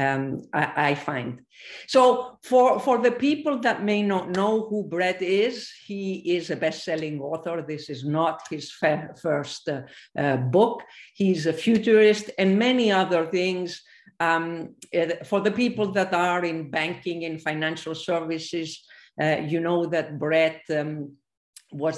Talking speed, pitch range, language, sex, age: 150 wpm, 150-175 Hz, English, female, 50-69